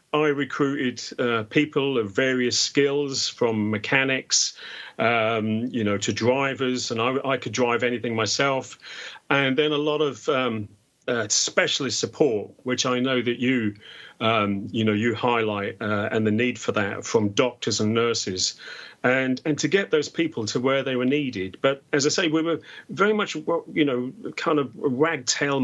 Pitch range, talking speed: 115-140 Hz, 175 wpm